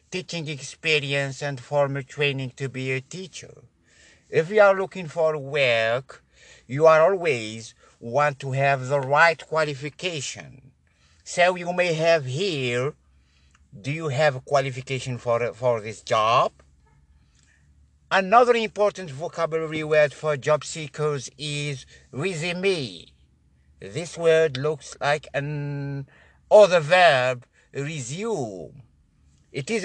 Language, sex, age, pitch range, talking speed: English, male, 60-79, 125-165 Hz, 115 wpm